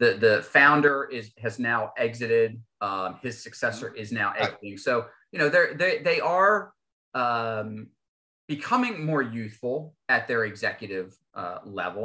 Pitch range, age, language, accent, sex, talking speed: 115-155 Hz, 30-49, English, American, male, 140 wpm